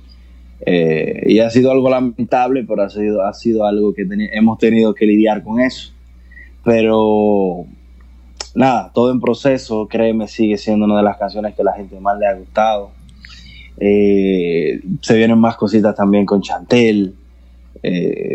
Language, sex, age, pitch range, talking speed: English, male, 20-39, 95-120 Hz, 155 wpm